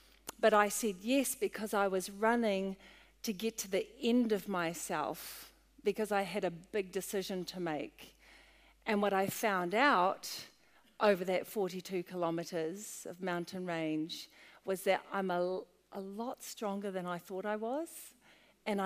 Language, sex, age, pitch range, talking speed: English, female, 50-69, 175-210 Hz, 155 wpm